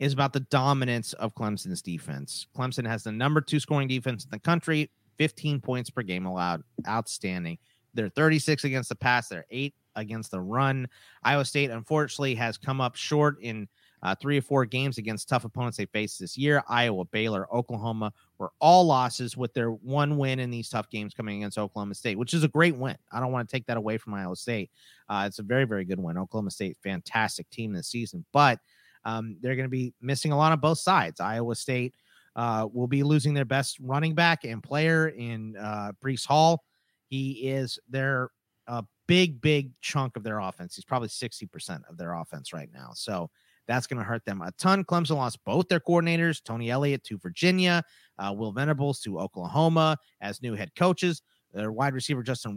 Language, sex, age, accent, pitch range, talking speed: English, male, 30-49, American, 110-140 Hz, 200 wpm